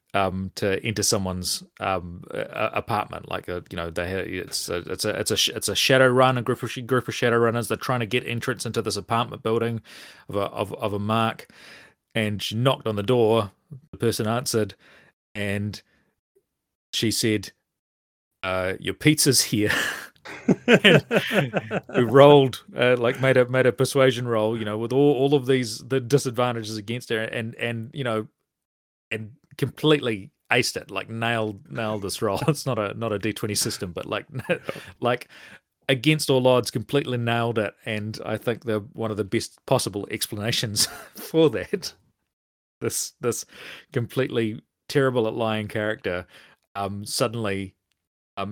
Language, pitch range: English, 105-125 Hz